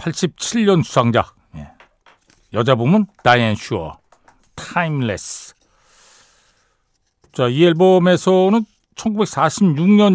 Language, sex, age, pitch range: Korean, male, 60-79, 115-185 Hz